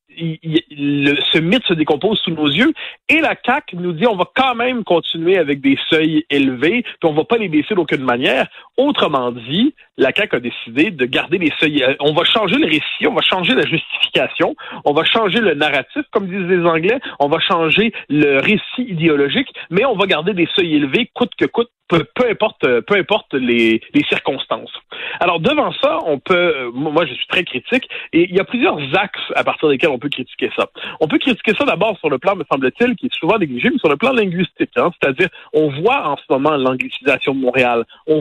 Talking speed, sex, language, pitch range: 220 wpm, male, French, 155-240 Hz